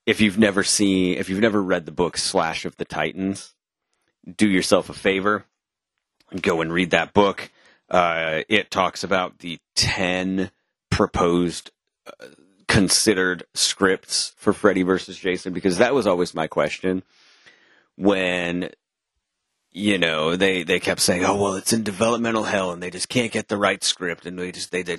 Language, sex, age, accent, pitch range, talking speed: English, male, 30-49, American, 85-100 Hz, 170 wpm